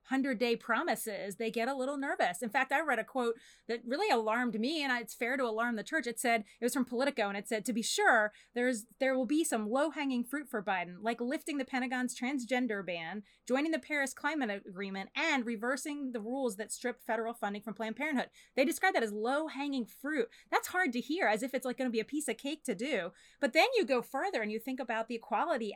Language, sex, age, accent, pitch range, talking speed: English, female, 30-49, American, 225-275 Hz, 235 wpm